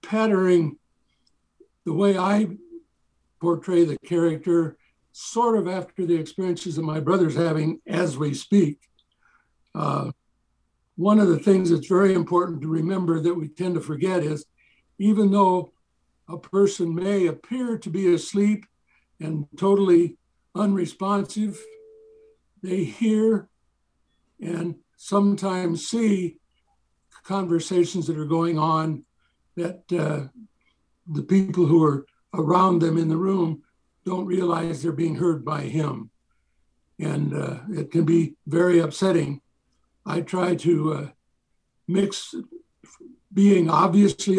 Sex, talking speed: male, 120 wpm